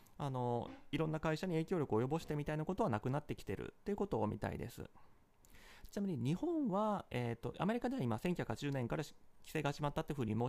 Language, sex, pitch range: Japanese, male, 120-200 Hz